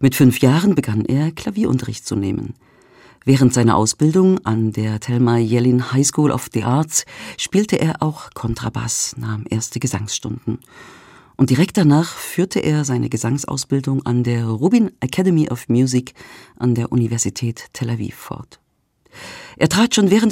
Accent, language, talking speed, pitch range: German, German, 150 wpm, 120-150 Hz